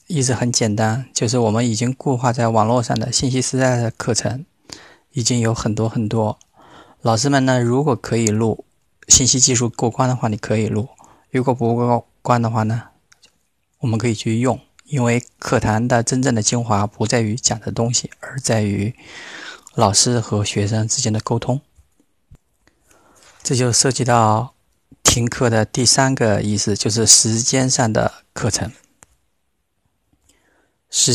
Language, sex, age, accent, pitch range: Chinese, male, 20-39, native, 110-130 Hz